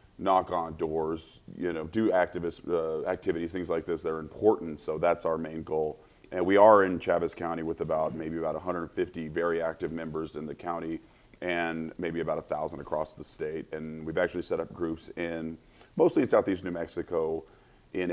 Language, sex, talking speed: English, male, 190 wpm